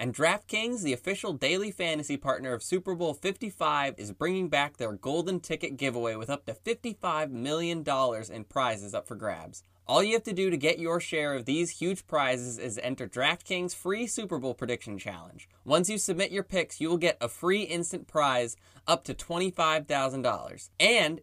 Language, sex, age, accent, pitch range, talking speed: English, male, 20-39, American, 130-180 Hz, 185 wpm